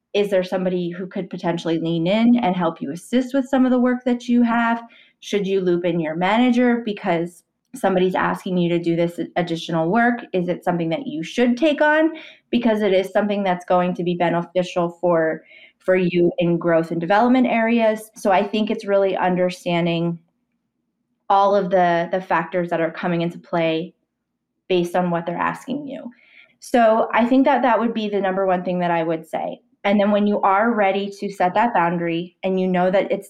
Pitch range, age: 175-225 Hz, 20-39